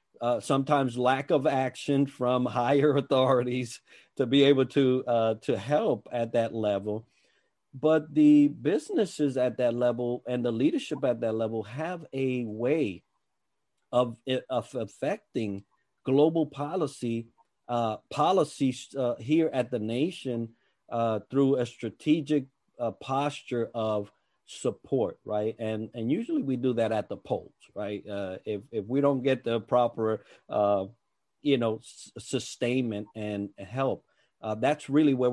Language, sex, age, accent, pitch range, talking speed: English, male, 50-69, American, 115-140 Hz, 140 wpm